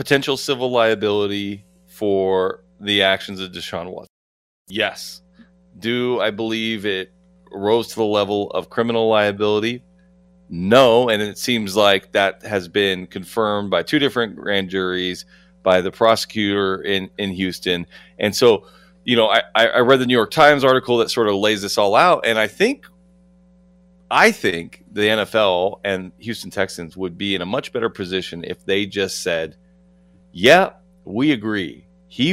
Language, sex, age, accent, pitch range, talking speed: English, male, 30-49, American, 90-125 Hz, 155 wpm